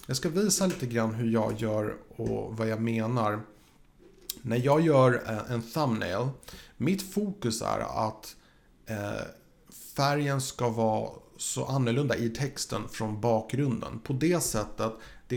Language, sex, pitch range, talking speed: Swedish, male, 115-145 Hz, 135 wpm